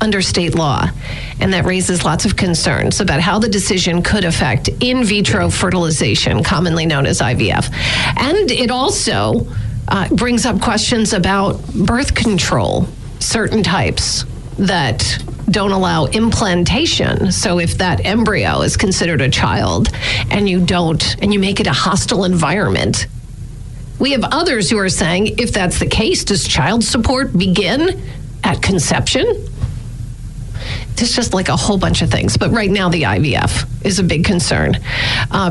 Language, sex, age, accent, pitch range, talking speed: English, female, 50-69, American, 155-205 Hz, 150 wpm